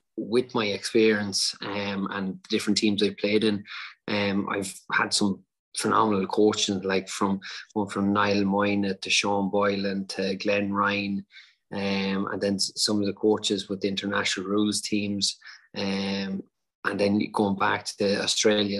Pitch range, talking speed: 100-105 Hz, 150 wpm